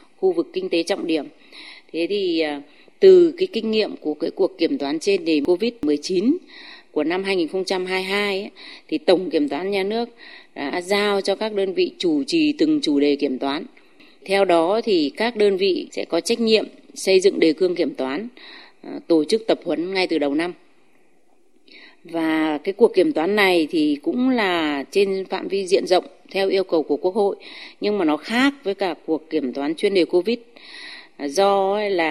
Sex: female